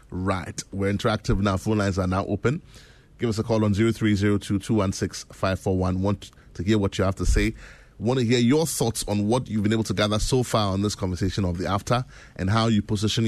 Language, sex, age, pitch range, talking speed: English, male, 20-39, 95-110 Hz, 210 wpm